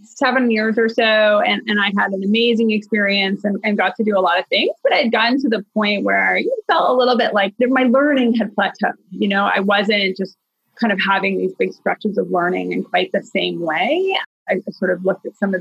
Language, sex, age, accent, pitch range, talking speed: English, female, 30-49, American, 195-235 Hz, 240 wpm